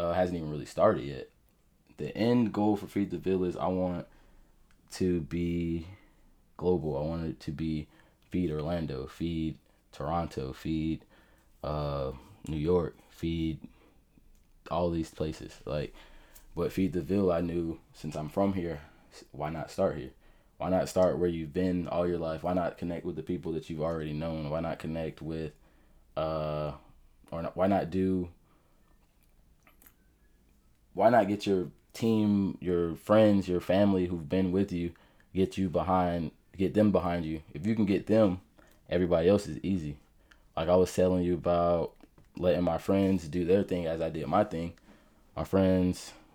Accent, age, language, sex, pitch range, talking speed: American, 20-39, English, male, 80-90 Hz, 165 wpm